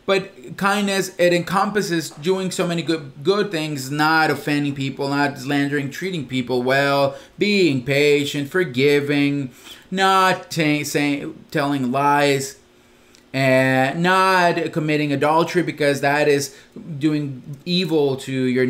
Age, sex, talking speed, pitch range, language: 30-49, male, 120 wpm, 140-180 Hz, English